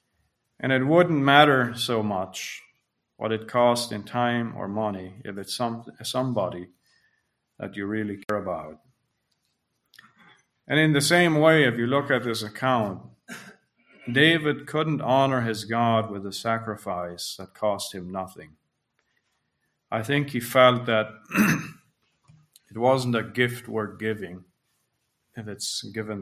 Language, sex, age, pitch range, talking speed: English, male, 40-59, 110-135 Hz, 135 wpm